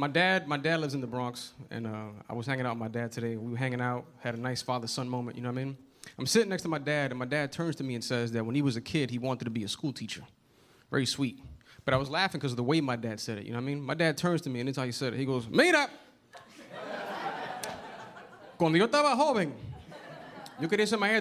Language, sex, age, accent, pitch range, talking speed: English, male, 30-49, American, 130-210 Hz, 270 wpm